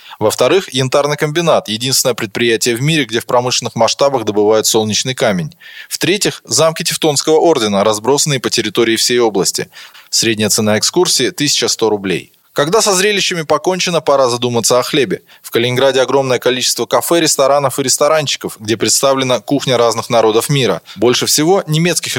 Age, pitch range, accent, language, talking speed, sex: 20-39, 120-155 Hz, native, Russian, 145 wpm, male